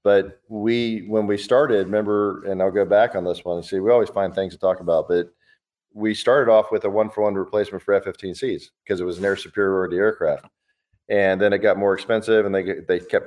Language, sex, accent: English, male, American